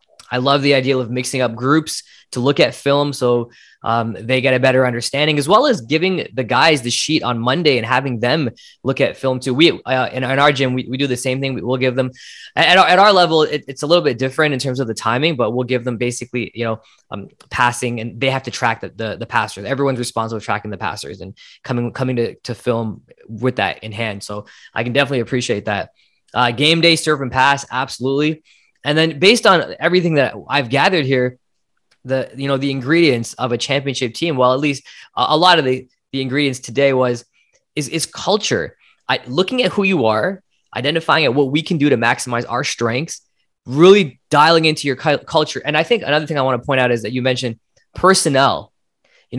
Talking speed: 220 wpm